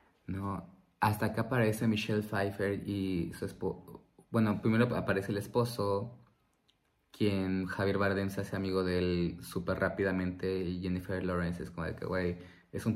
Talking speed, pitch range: 160 wpm, 95-110 Hz